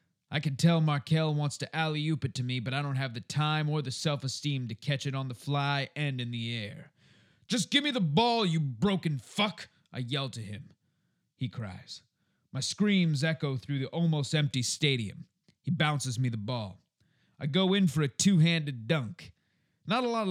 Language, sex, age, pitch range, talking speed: English, male, 30-49, 135-175 Hz, 195 wpm